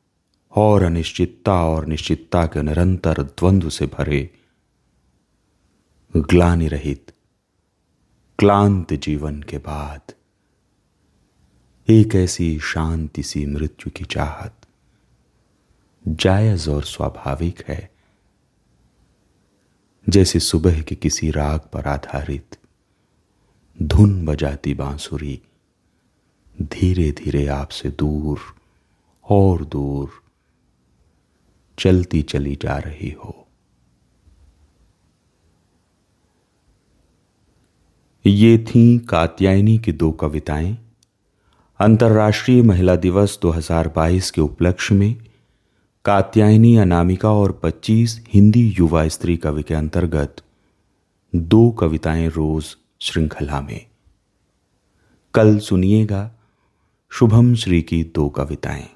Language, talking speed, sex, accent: Hindi, 85 wpm, male, native